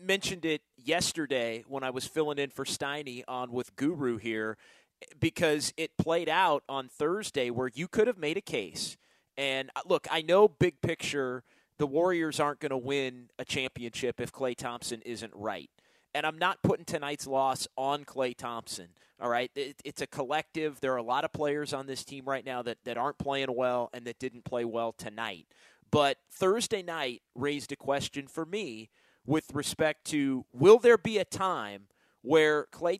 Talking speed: 185 wpm